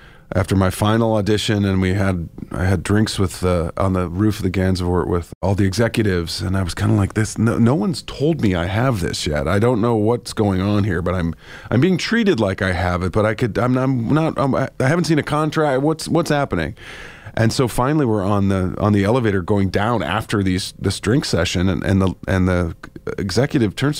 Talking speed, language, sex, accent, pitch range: 230 wpm, English, male, American, 95-120 Hz